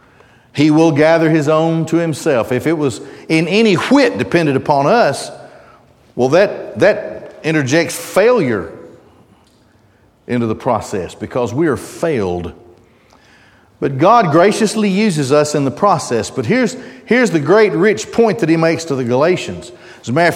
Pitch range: 120-155 Hz